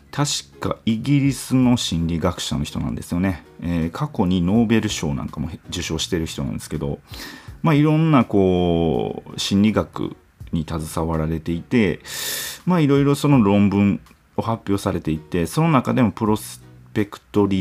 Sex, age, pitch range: male, 40-59, 80-125 Hz